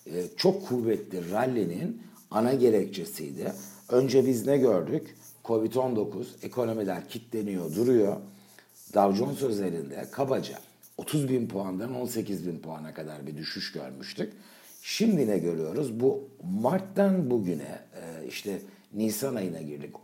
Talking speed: 110 wpm